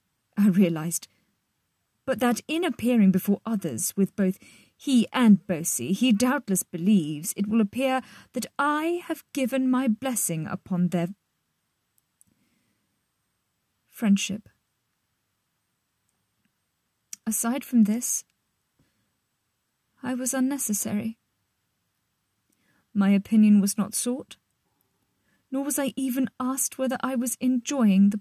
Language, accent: English, British